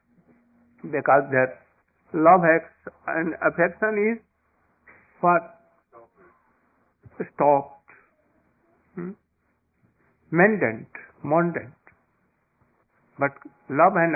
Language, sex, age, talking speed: English, male, 60-79, 55 wpm